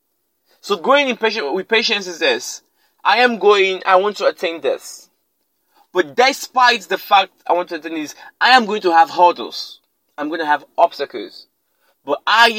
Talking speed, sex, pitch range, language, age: 180 wpm, male, 185-295 Hz, English, 30-49